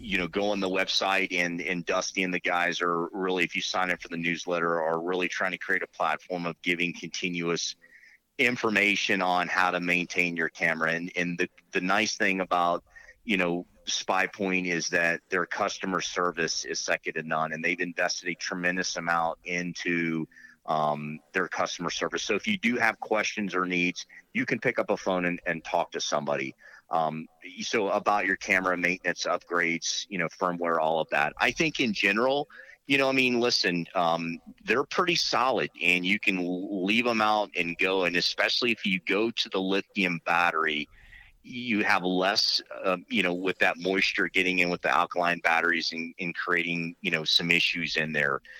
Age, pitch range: 30-49, 85-100 Hz